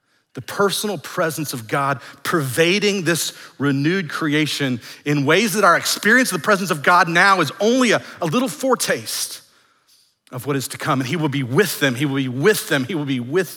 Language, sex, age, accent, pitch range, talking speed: English, male, 40-59, American, 110-145 Hz, 205 wpm